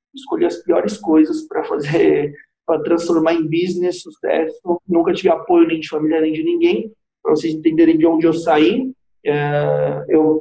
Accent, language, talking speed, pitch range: Brazilian, Portuguese, 160 wpm, 160-240 Hz